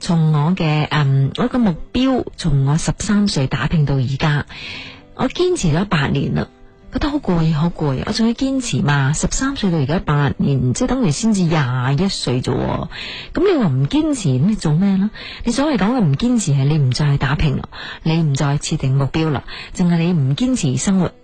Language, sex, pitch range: Chinese, female, 145-220 Hz